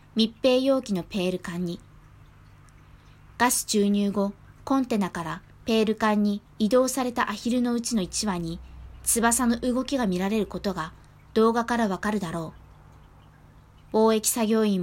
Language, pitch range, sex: Japanese, 180-235 Hz, female